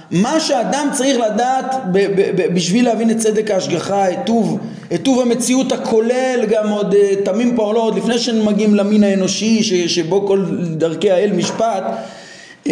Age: 30-49